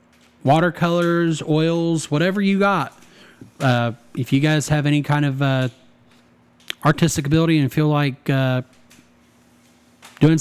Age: 40-59